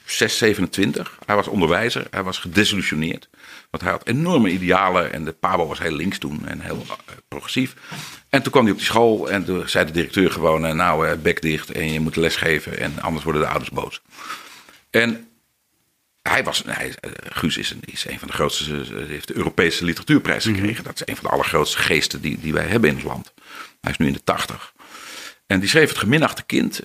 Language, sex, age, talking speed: Dutch, male, 50-69, 205 wpm